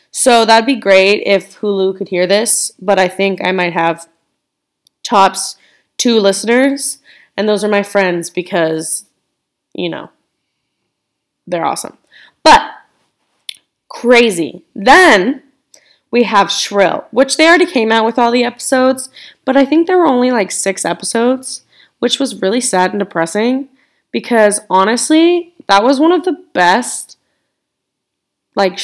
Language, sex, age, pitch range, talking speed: English, female, 20-39, 180-250 Hz, 140 wpm